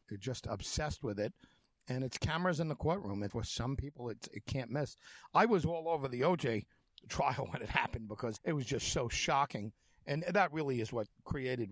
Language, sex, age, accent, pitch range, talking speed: English, male, 50-69, American, 110-135 Hz, 210 wpm